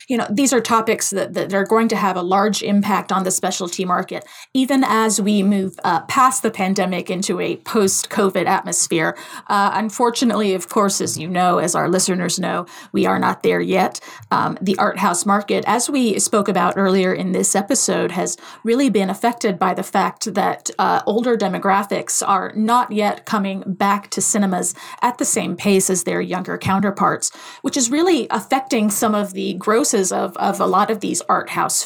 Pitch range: 190-230 Hz